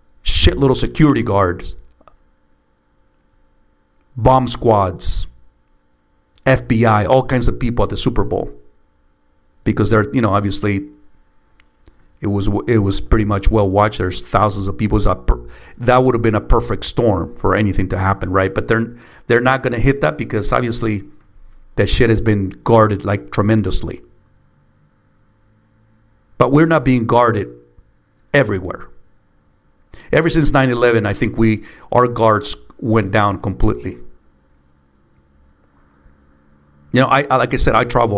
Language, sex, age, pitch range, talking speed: English, male, 50-69, 75-115 Hz, 140 wpm